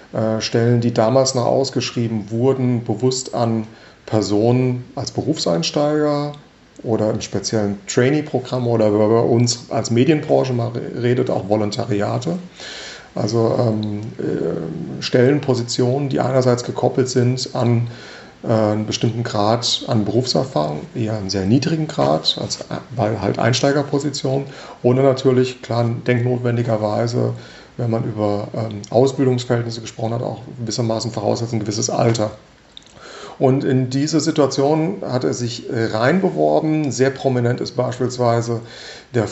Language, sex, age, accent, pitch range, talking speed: German, male, 40-59, German, 110-130 Hz, 120 wpm